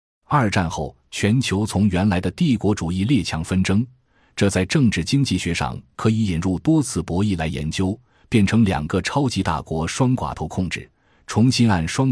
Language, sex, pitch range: Chinese, male, 85-110 Hz